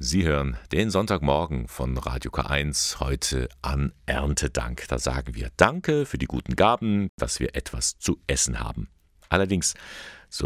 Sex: male